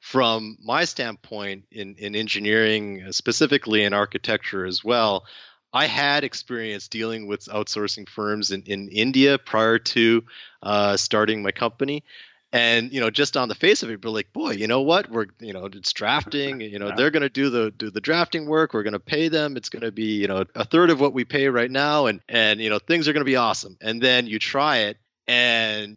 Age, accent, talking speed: 30-49, American, 215 wpm